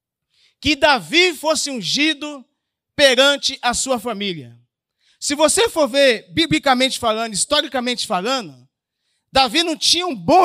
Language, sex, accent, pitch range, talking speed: Portuguese, male, Brazilian, 245-315 Hz, 120 wpm